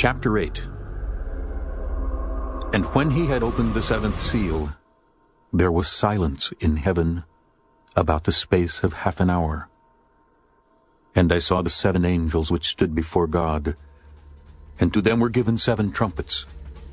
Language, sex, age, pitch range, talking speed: Filipino, male, 60-79, 90-125 Hz, 140 wpm